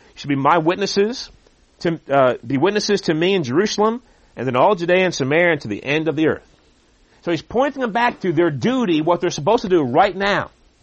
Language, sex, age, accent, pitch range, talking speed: English, male, 40-59, American, 140-205 Hz, 220 wpm